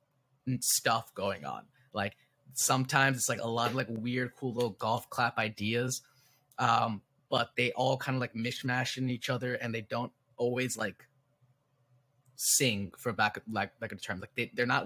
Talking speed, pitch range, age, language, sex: 180 wpm, 110-135 Hz, 20-39, English, male